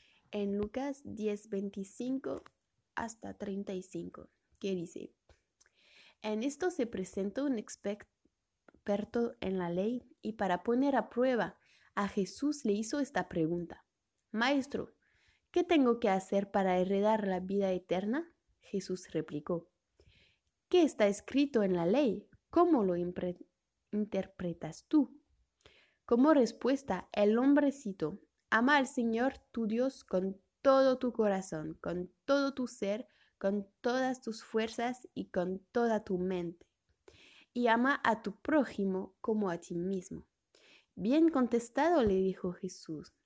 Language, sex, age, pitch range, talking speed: Spanish, female, 20-39, 190-255 Hz, 125 wpm